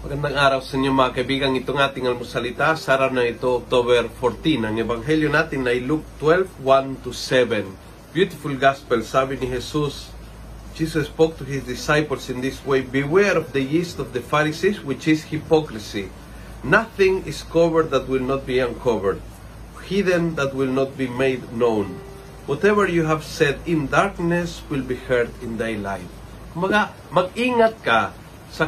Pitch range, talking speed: 120-160 Hz, 160 wpm